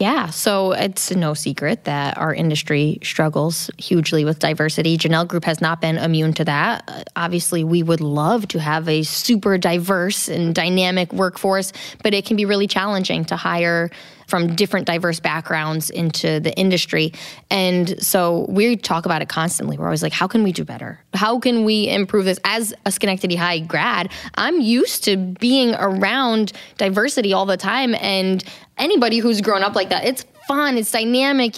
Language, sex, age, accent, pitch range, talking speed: English, female, 10-29, American, 170-225 Hz, 175 wpm